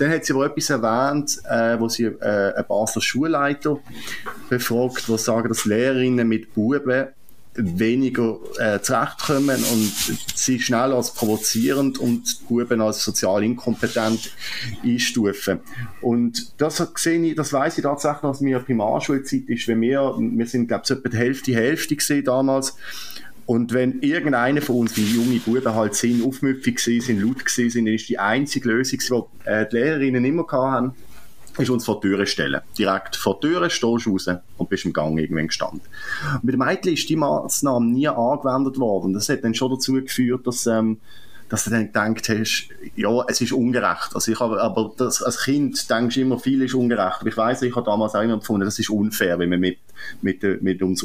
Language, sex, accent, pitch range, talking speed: German, male, German, 110-135 Hz, 180 wpm